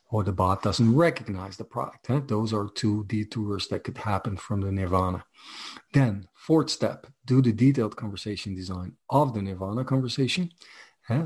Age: 40-59